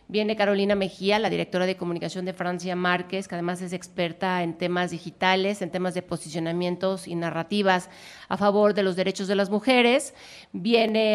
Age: 40-59